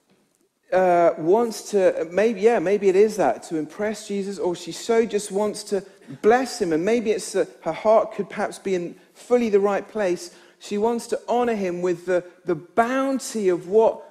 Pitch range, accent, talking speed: 180-235 Hz, British, 185 wpm